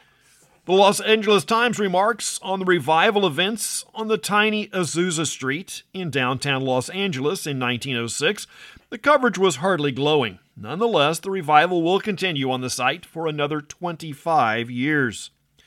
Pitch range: 145-200 Hz